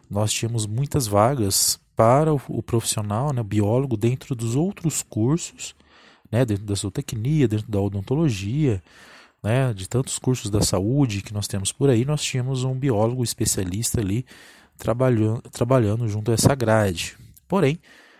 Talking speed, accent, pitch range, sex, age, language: 155 wpm, Brazilian, 105-130 Hz, male, 20-39, Portuguese